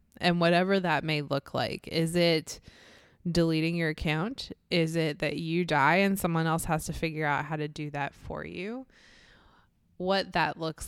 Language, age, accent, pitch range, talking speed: English, 20-39, American, 145-170 Hz, 175 wpm